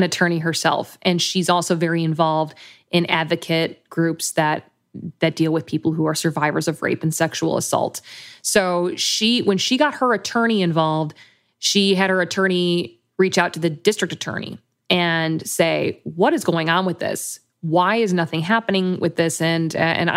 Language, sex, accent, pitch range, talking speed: English, female, American, 165-195 Hz, 170 wpm